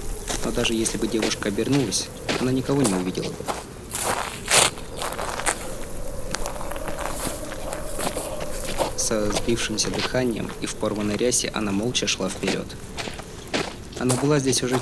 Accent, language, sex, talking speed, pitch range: native, Russian, male, 105 wpm, 95-125 Hz